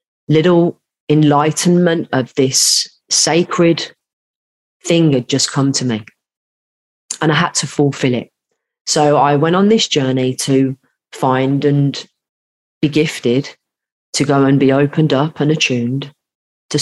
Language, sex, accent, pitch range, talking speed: English, female, British, 130-150 Hz, 130 wpm